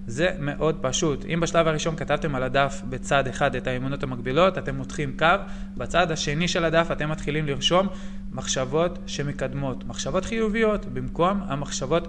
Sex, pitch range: male, 135-195 Hz